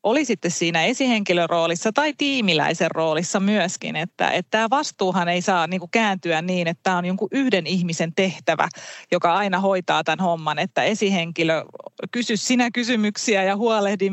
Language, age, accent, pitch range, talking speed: Finnish, 30-49, native, 170-200 Hz, 155 wpm